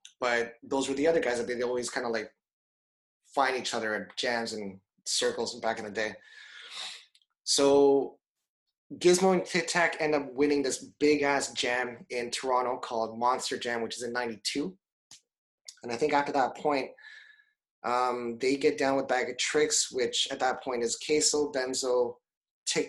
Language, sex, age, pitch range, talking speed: English, male, 20-39, 120-150 Hz, 170 wpm